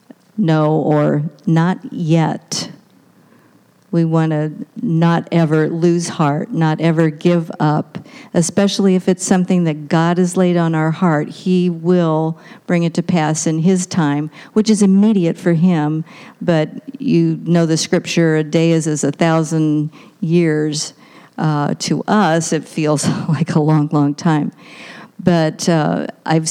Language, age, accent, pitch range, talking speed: English, 50-69, American, 155-185 Hz, 145 wpm